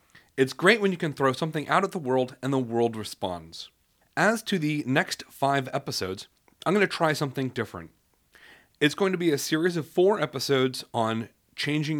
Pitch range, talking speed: 115-165 Hz, 190 wpm